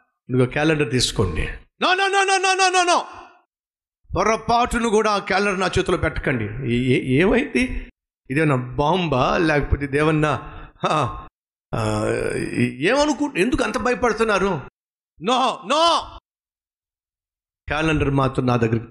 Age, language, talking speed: 50-69, Telugu, 80 wpm